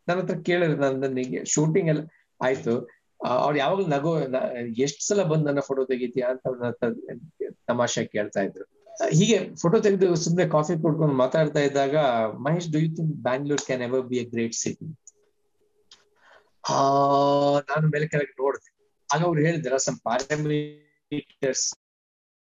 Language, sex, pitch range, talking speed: Kannada, male, 135-175 Hz, 120 wpm